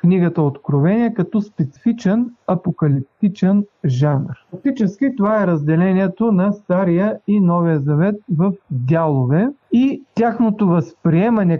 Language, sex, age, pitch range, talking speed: Bulgarian, male, 40-59, 155-205 Hz, 105 wpm